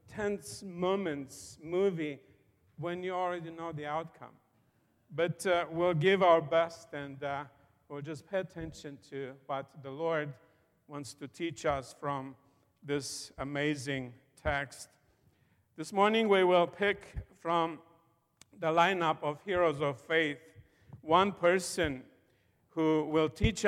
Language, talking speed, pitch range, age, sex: English, 125 wpm, 145-175 Hz, 50-69, male